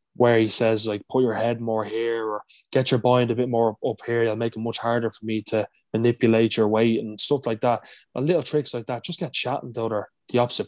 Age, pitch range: 20-39, 105-125 Hz